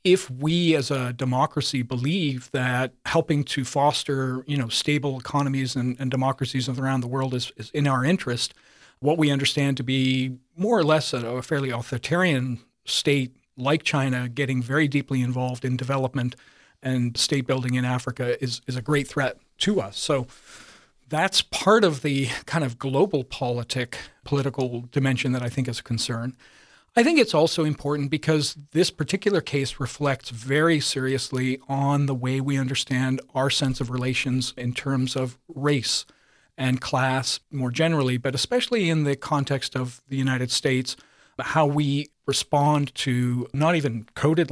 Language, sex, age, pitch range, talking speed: English, male, 40-59, 125-145 Hz, 160 wpm